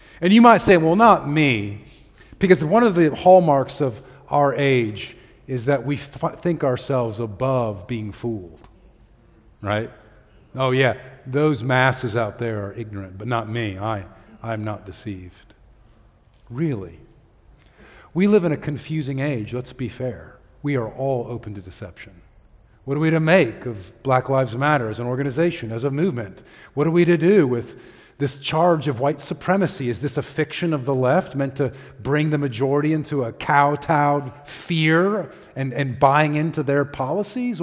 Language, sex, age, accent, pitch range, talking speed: English, male, 50-69, American, 115-160 Hz, 165 wpm